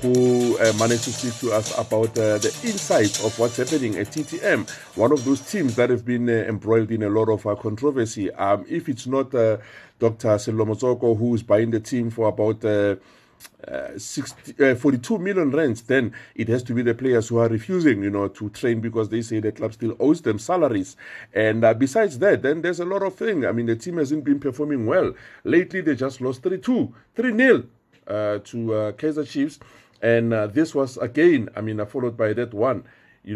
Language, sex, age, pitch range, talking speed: English, male, 50-69, 110-135 Hz, 205 wpm